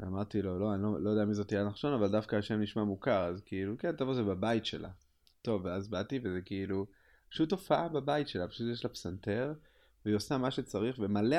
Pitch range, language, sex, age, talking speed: 95-125 Hz, Hebrew, male, 30-49, 220 wpm